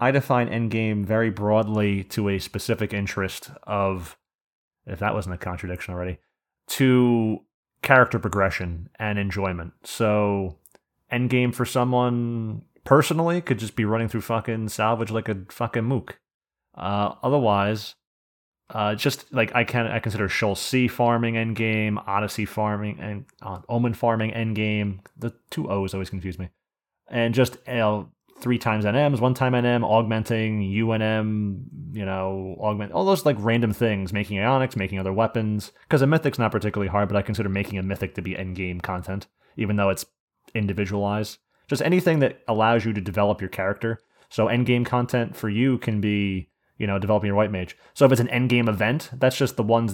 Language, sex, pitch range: English, male, 100-120 Hz